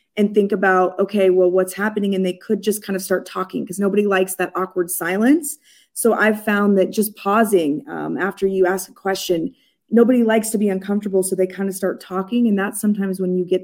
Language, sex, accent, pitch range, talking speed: English, female, American, 185-210 Hz, 220 wpm